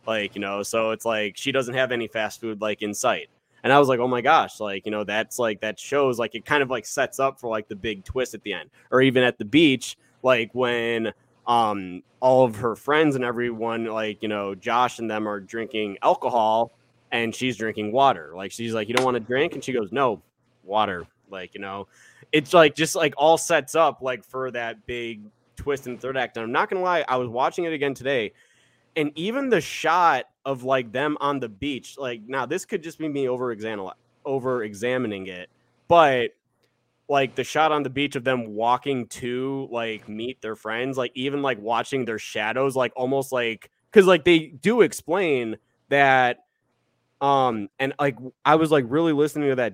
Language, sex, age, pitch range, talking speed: English, male, 20-39, 110-135 Hz, 210 wpm